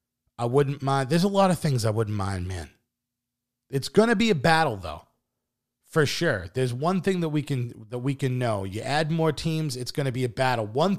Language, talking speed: English, 230 wpm